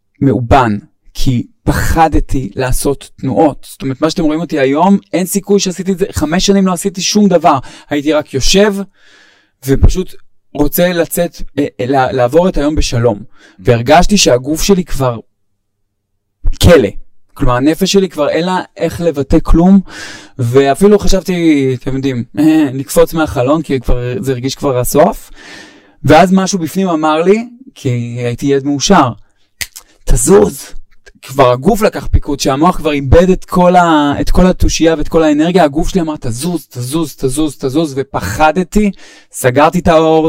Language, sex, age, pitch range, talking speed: Hebrew, male, 20-39, 120-175 Hz, 145 wpm